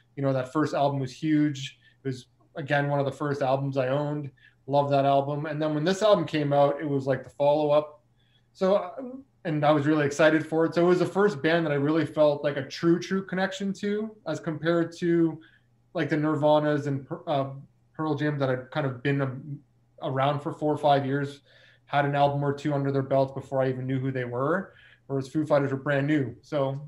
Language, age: English, 20-39